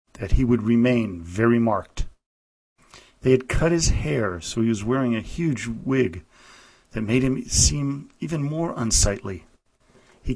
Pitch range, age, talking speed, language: 100-125 Hz, 40-59, 150 wpm, English